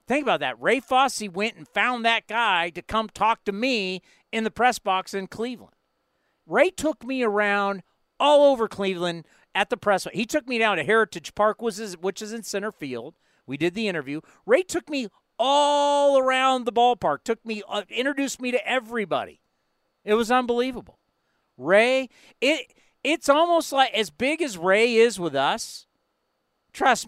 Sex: male